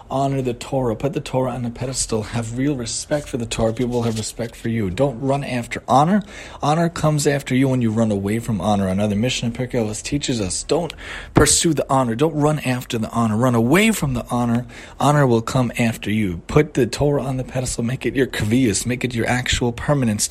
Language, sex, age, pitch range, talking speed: English, male, 30-49, 115-150 Hz, 215 wpm